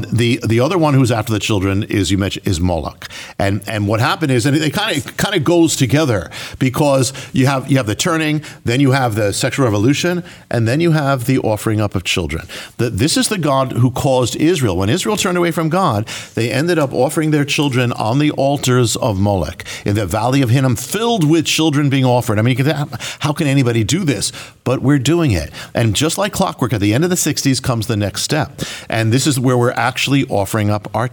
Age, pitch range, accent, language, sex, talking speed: 50-69, 115-150 Hz, American, English, male, 225 wpm